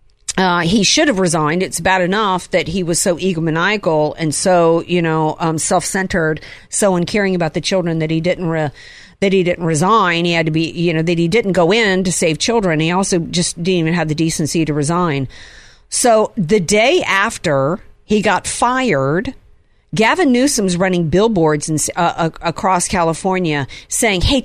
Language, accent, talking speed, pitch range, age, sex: English, American, 180 wpm, 155-190 Hz, 50-69, female